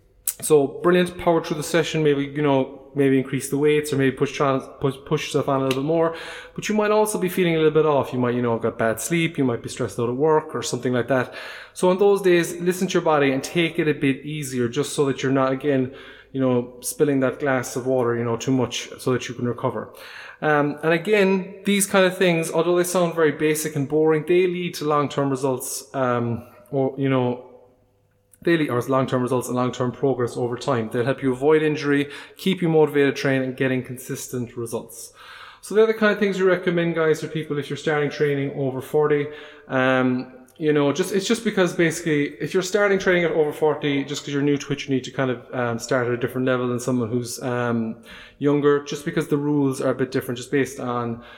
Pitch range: 130-165 Hz